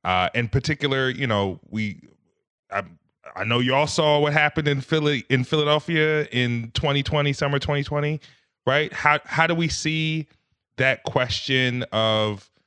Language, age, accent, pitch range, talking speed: English, 20-39, American, 105-135 Hz, 140 wpm